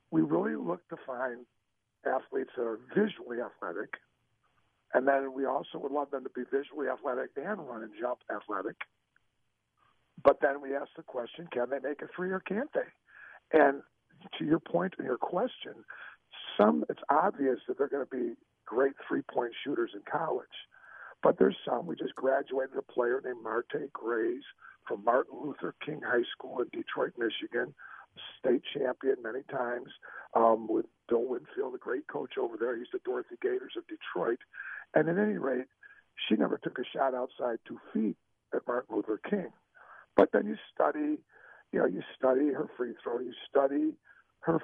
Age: 50-69